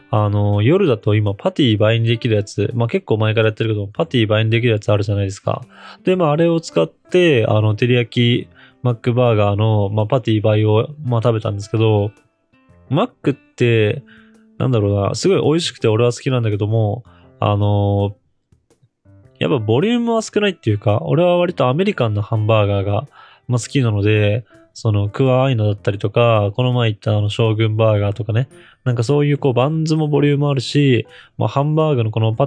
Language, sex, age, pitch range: Japanese, male, 20-39, 105-130 Hz